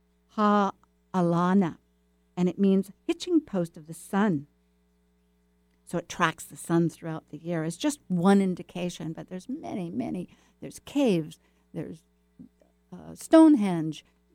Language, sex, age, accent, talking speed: English, female, 60-79, American, 125 wpm